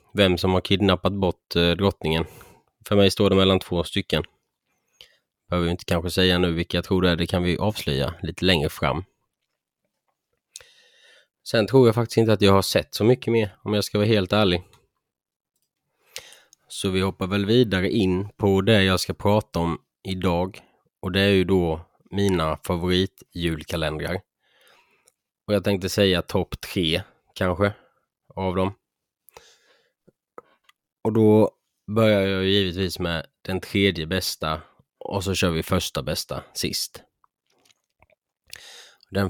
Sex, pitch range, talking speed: male, 90-100 Hz, 145 wpm